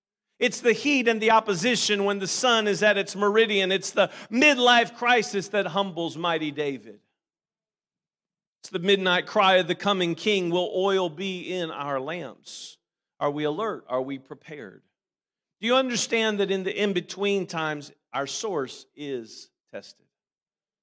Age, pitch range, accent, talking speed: 40-59, 150-200 Hz, American, 155 wpm